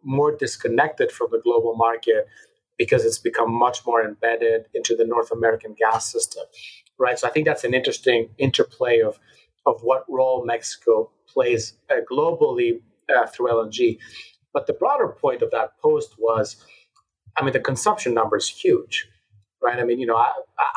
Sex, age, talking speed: male, 30-49, 165 wpm